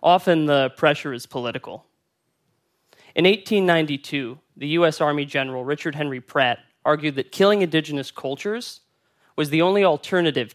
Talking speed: 130 wpm